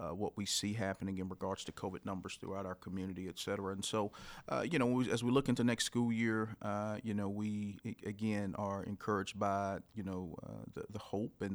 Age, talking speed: 40-59, 220 wpm